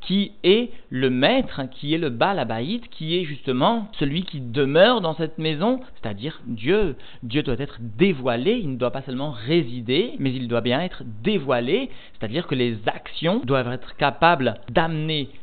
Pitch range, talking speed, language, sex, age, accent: 115-155 Hz, 165 wpm, French, male, 50-69, French